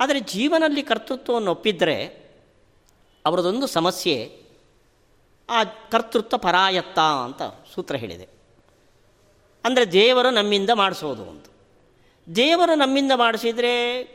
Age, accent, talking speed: 40-59, native, 85 wpm